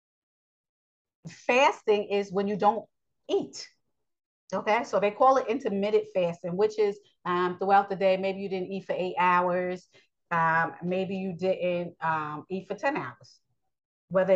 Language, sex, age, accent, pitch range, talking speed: English, female, 30-49, American, 160-195 Hz, 150 wpm